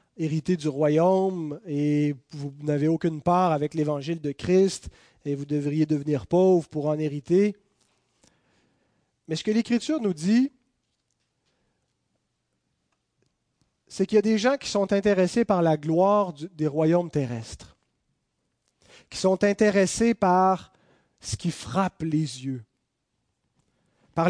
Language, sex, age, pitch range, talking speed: French, male, 30-49, 150-195 Hz, 125 wpm